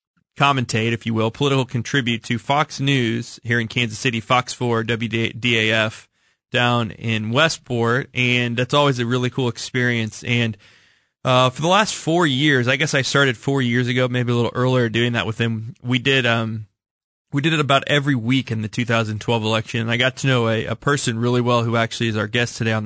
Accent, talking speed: American, 205 wpm